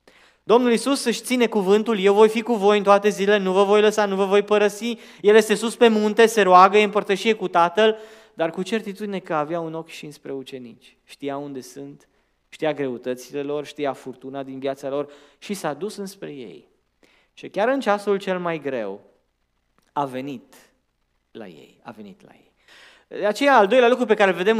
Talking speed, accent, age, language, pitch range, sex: 200 wpm, native, 20-39, Romanian, 170-235 Hz, male